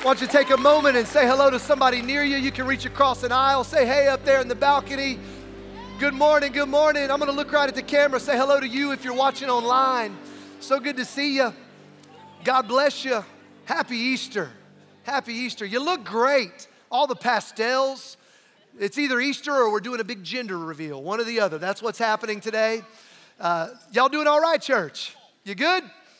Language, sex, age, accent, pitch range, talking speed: English, male, 40-59, American, 220-275 Hz, 205 wpm